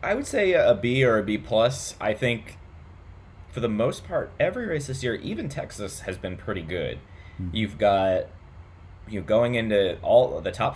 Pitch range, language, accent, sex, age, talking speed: 80-95 Hz, English, American, male, 20-39, 190 wpm